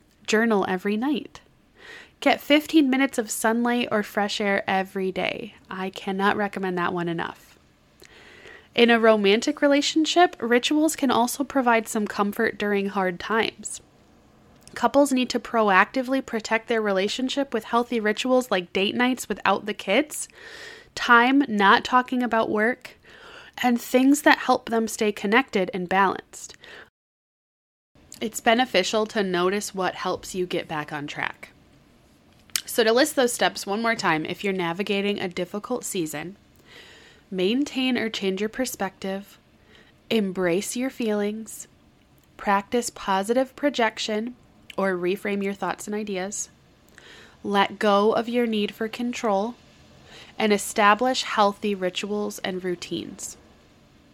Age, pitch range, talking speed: 20-39, 195-245 Hz, 130 wpm